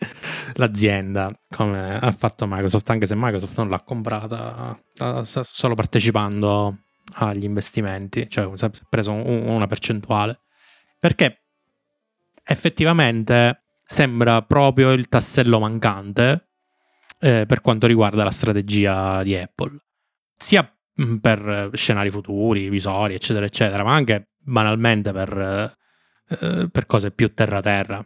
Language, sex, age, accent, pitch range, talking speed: Italian, male, 20-39, native, 100-120 Hz, 105 wpm